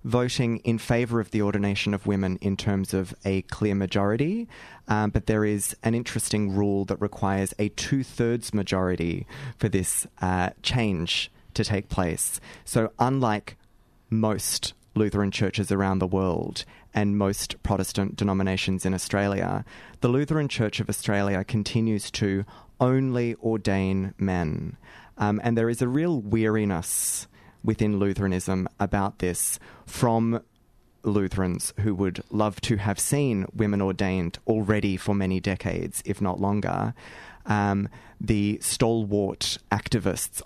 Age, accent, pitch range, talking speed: 20-39, Australian, 95-115 Hz, 130 wpm